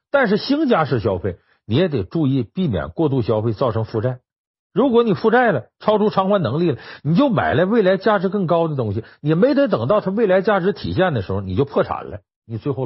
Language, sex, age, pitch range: Chinese, male, 50-69, 115-190 Hz